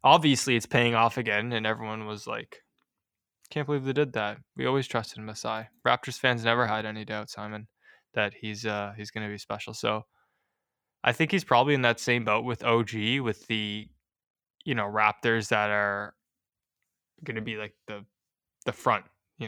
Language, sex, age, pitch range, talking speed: English, male, 10-29, 105-120 Hz, 175 wpm